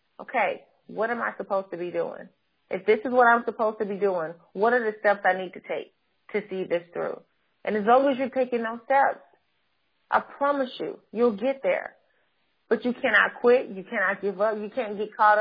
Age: 30-49